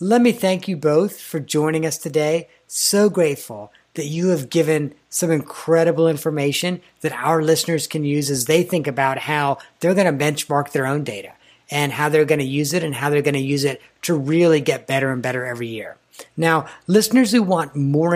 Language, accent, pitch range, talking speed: English, American, 145-170 Hz, 205 wpm